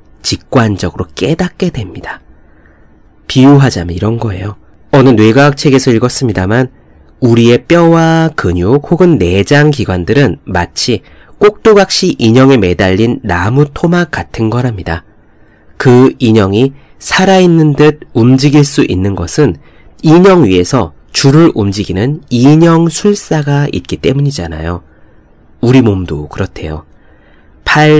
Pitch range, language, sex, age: 95-140 Hz, Korean, male, 30-49